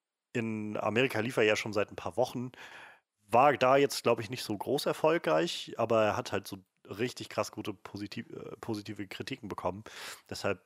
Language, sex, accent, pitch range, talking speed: German, male, German, 100-125 Hz, 175 wpm